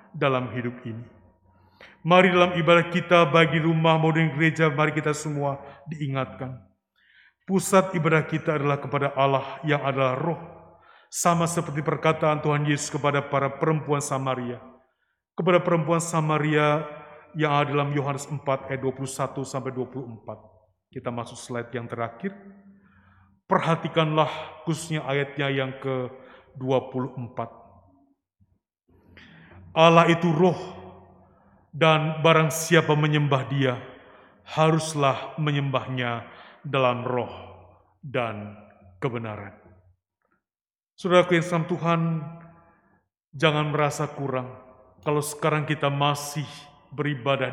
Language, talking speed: Indonesian, 100 wpm